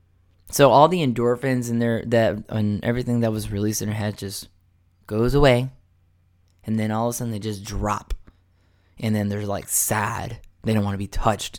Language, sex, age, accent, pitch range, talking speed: English, male, 10-29, American, 110-130 Hz, 195 wpm